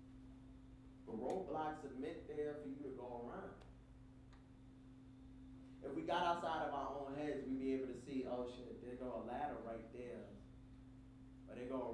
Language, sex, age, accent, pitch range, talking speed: English, male, 20-39, American, 130-155 Hz, 170 wpm